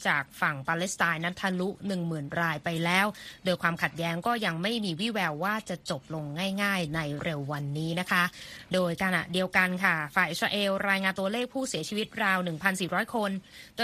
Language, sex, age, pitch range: Thai, female, 20-39, 170-210 Hz